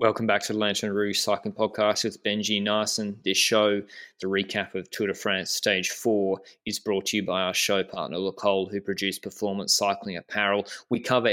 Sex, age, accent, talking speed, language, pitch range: male, 20-39, Australian, 195 wpm, English, 100-115 Hz